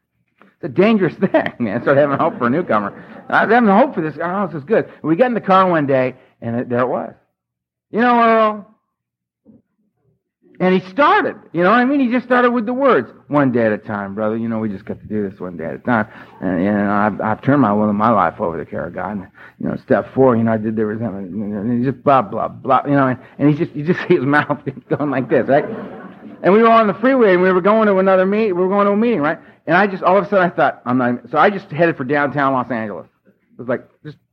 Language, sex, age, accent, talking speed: English, male, 60-79, American, 280 wpm